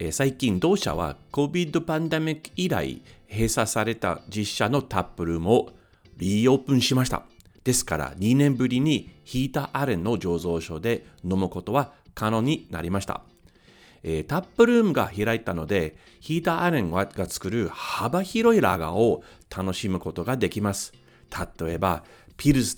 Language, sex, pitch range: Japanese, male, 90-145 Hz